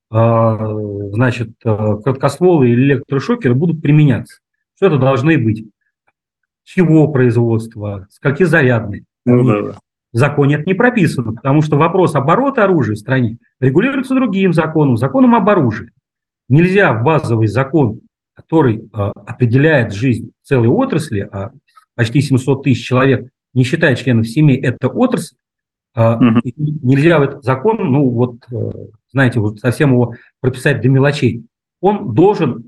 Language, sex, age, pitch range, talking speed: Russian, male, 40-59, 120-165 Hz, 125 wpm